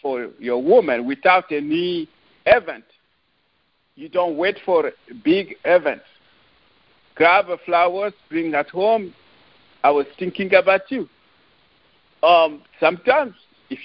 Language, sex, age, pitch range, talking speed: English, male, 50-69, 165-275 Hz, 115 wpm